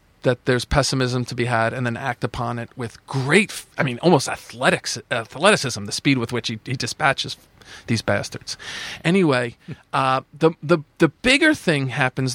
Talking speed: 170 wpm